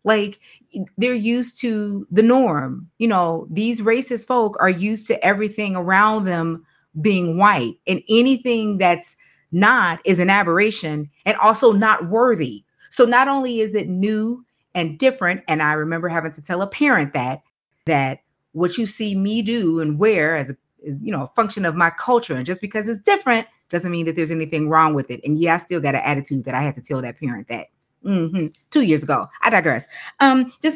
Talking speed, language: 195 wpm, English